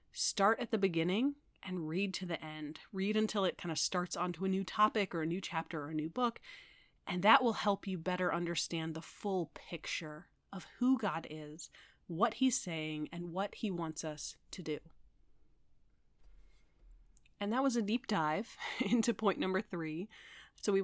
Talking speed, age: 180 wpm, 30-49